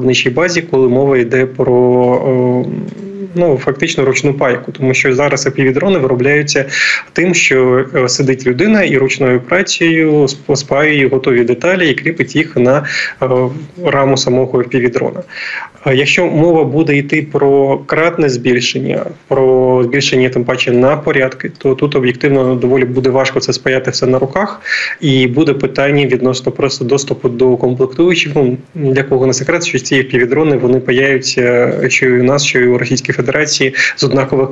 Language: Ukrainian